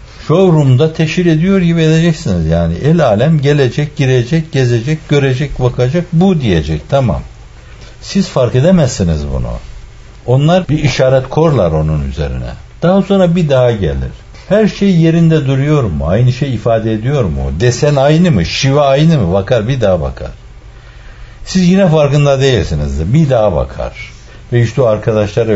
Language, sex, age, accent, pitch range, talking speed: Turkish, male, 60-79, native, 95-155 Hz, 145 wpm